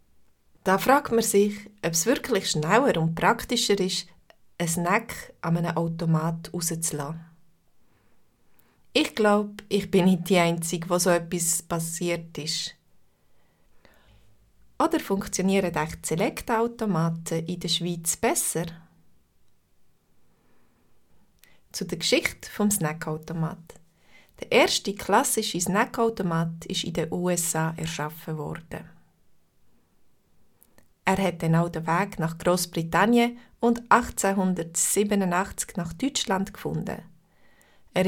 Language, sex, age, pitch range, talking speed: German, female, 30-49, 165-200 Hz, 105 wpm